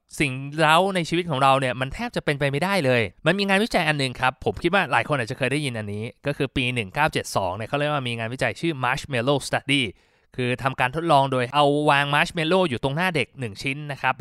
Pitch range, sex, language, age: 130-170 Hz, male, Thai, 20-39